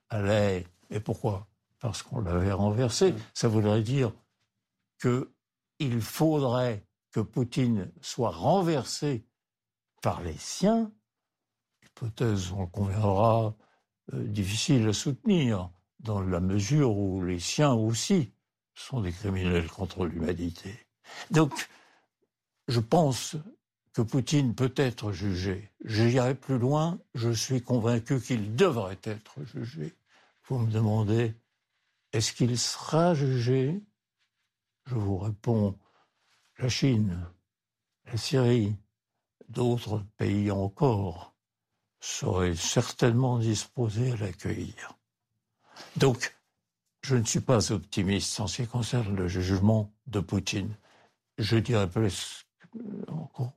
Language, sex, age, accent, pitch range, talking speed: French, male, 60-79, French, 100-125 Hz, 105 wpm